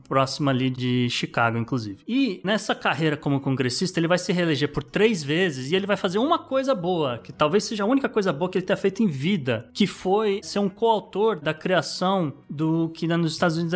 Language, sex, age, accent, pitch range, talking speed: Portuguese, male, 20-39, Brazilian, 145-190 Hz, 215 wpm